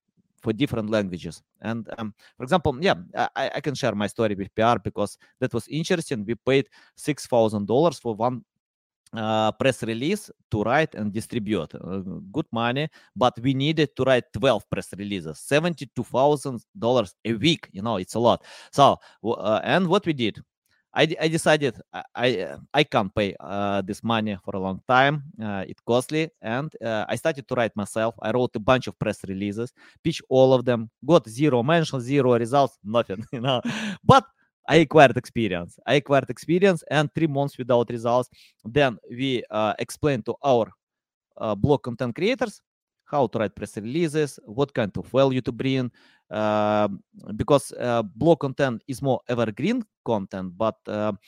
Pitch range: 110-145 Hz